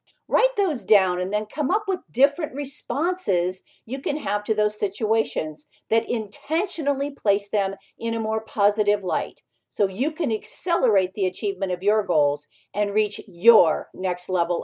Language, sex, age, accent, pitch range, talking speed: English, female, 50-69, American, 205-285 Hz, 160 wpm